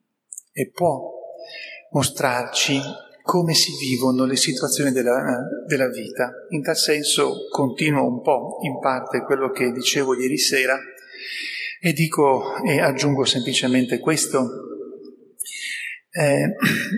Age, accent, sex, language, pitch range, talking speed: 40-59, native, male, Italian, 130-170 Hz, 110 wpm